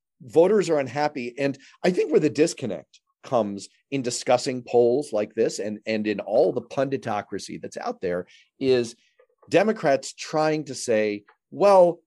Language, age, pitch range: English, 40-59, 110-170 Hz